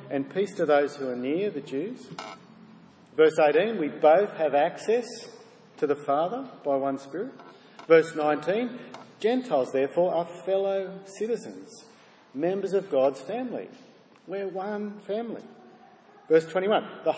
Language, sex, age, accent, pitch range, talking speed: English, male, 40-59, Australian, 150-195 Hz, 135 wpm